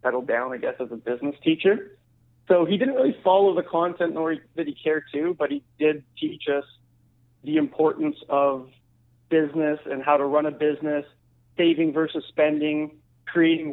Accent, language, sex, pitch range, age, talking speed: American, English, male, 125-160 Hz, 30-49, 170 wpm